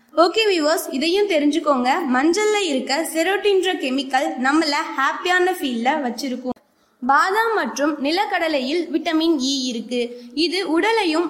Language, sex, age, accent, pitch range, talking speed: Tamil, female, 20-39, native, 265-345 Hz, 105 wpm